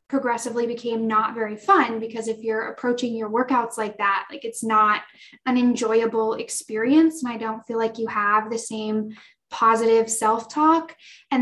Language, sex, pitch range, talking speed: English, female, 225-280 Hz, 165 wpm